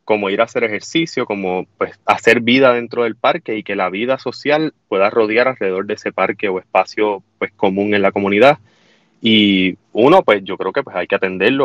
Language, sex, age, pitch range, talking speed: Spanish, male, 20-39, 100-125 Hz, 205 wpm